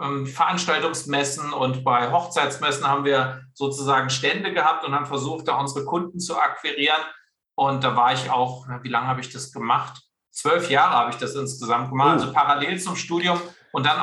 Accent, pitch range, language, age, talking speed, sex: German, 135-165 Hz, German, 50-69, 175 wpm, male